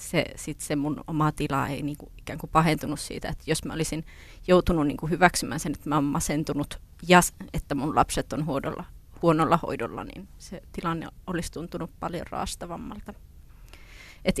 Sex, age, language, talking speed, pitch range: female, 30-49, Finnish, 160 wpm, 150-185 Hz